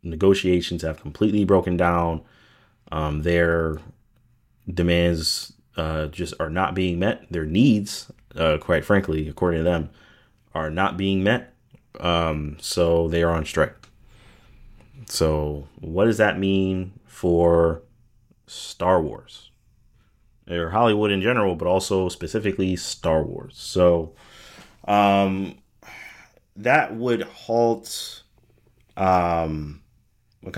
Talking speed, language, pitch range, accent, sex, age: 110 wpm, English, 85-110 Hz, American, male, 30-49